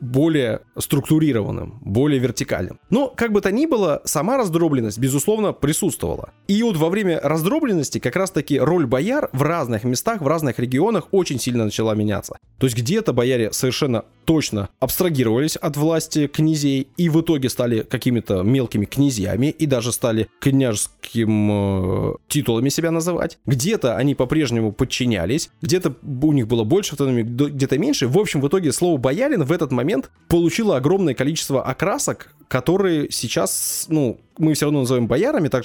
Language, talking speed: Russian, 155 wpm